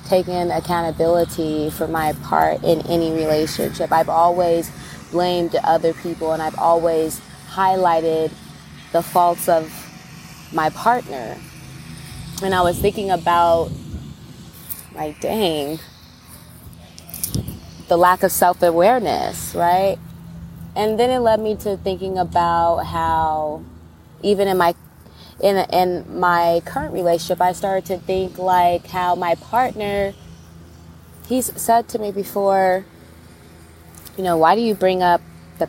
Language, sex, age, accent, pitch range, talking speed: English, female, 20-39, American, 155-185 Hz, 120 wpm